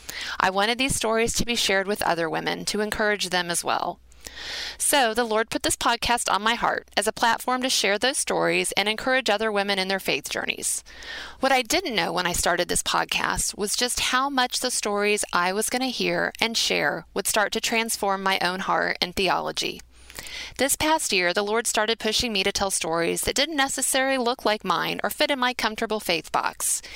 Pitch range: 195-250 Hz